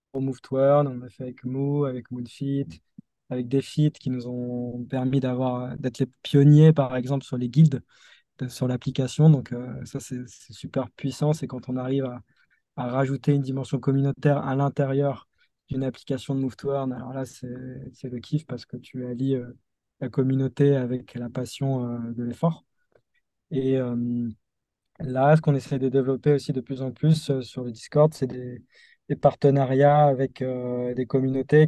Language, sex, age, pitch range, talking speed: French, male, 20-39, 125-140 Hz, 185 wpm